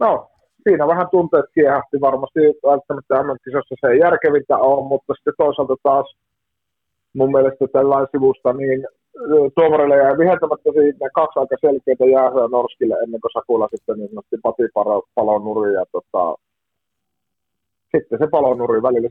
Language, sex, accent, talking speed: Finnish, male, native, 135 wpm